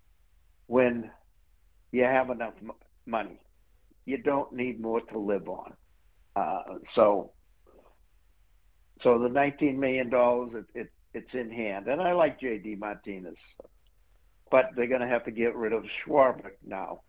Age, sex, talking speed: 60-79, male, 140 wpm